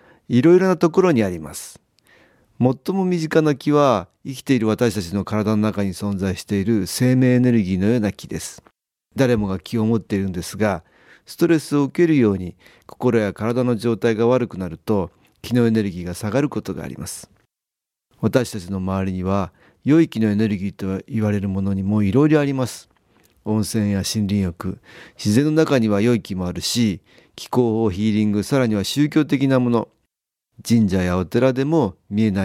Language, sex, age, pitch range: Japanese, male, 40-59, 95-125 Hz